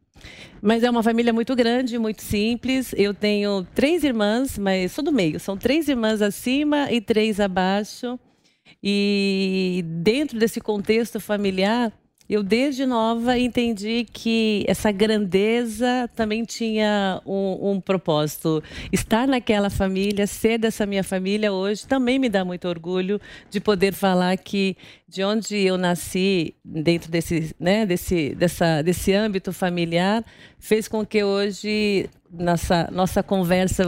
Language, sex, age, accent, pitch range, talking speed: English, female, 40-59, Brazilian, 185-225 Hz, 135 wpm